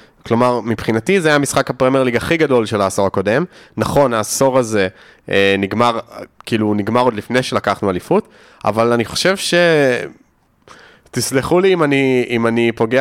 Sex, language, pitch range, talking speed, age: male, Hebrew, 110-135 Hz, 150 wpm, 20-39